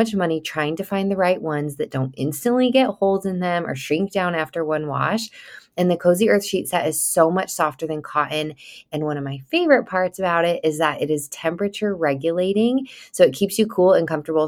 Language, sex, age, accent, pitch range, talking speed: English, female, 20-39, American, 150-205 Hz, 220 wpm